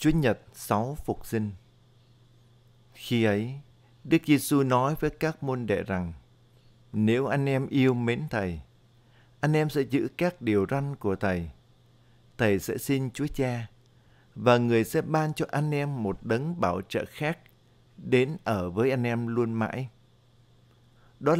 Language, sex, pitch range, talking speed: Vietnamese, male, 115-140 Hz, 155 wpm